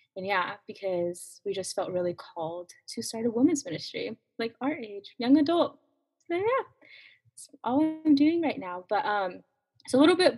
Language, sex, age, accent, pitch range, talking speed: English, female, 20-39, American, 180-235 Hz, 185 wpm